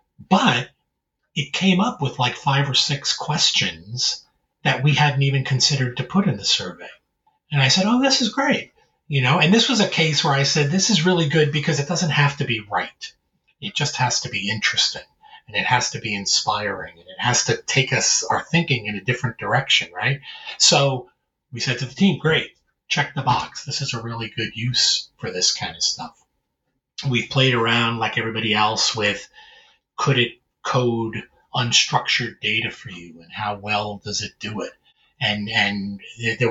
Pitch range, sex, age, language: 105-150 Hz, male, 30-49, English